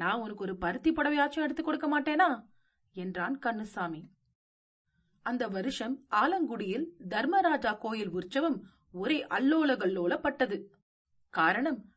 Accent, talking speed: native, 95 wpm